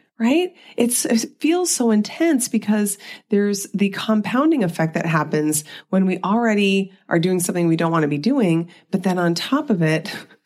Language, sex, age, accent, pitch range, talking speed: English, female, 30-49, American, 160-225 Hz, 180 wpm